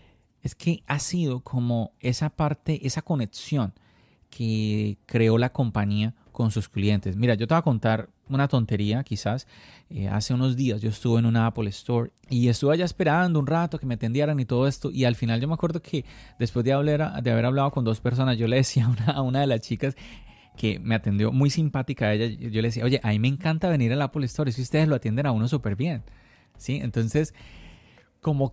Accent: Colombian